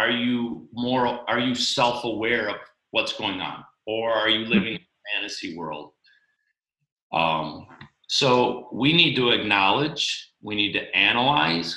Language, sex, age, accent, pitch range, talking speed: English, male, 40-59, American, 105-140 Hz, 145 wpm